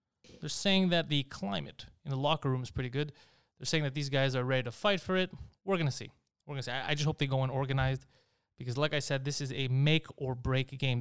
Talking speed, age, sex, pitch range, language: 255 wpm, 20-39, male, 125-150 Hz, English